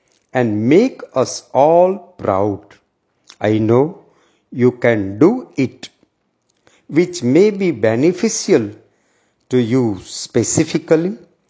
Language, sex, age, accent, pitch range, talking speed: Gujarati, male, 50-69, native, 115-160 Hz, 95 wpm